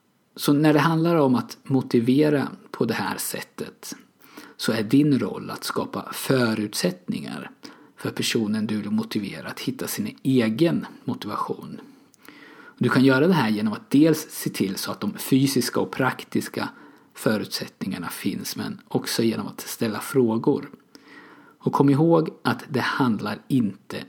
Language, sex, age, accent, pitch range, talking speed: Swedish, male, 50-69, native, 115-165 Hz, 145 wpm